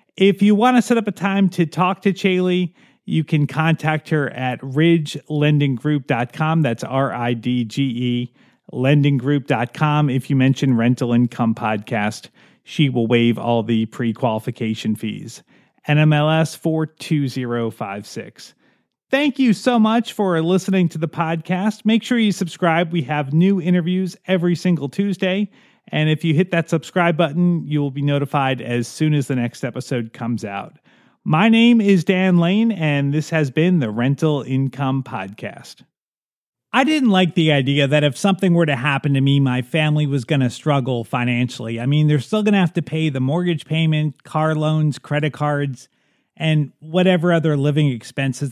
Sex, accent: male, American